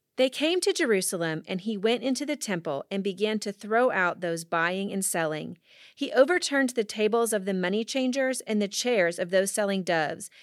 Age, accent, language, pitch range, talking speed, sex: 30-49, American, English, 200-280 Hz, 195 wpm, female